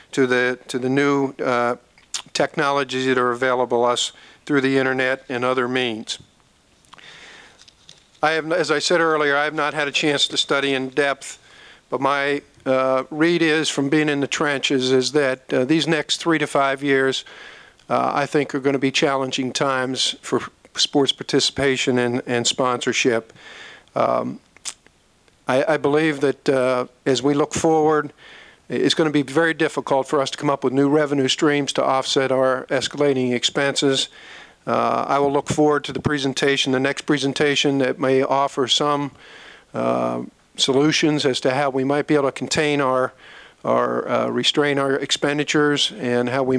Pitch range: 130-145 Hz